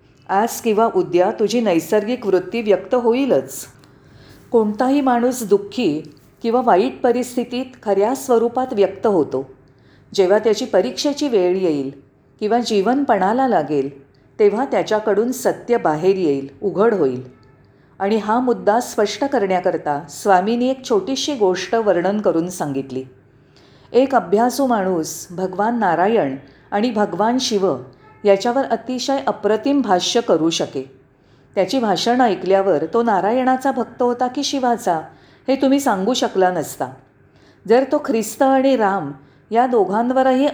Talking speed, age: 120 wpm, 40-59